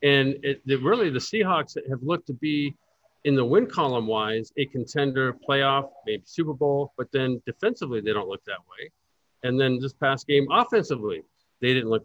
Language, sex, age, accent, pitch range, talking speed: English, male, 50-69, American, 130-170 Hz, 185 wpm